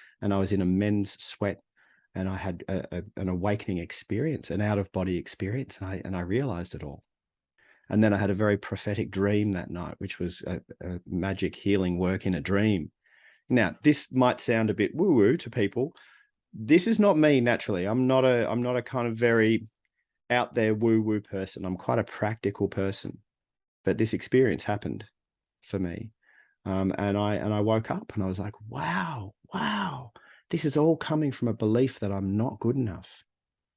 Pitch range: 95-125 Hz